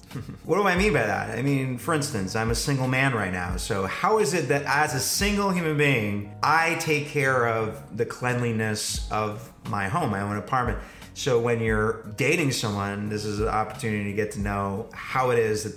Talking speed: 210 wpm